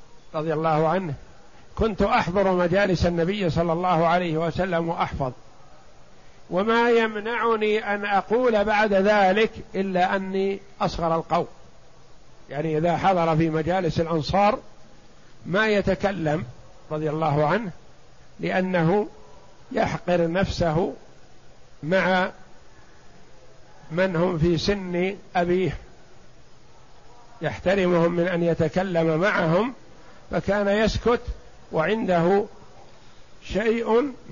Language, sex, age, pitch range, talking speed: Arabic, male, 50-69, 165-200 Hz, 90 wpm